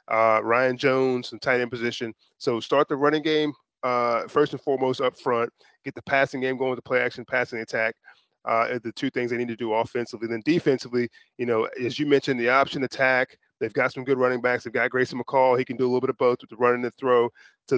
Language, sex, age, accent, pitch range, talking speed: English, male, 20-39, American, 120-135 Hz, 250 wpm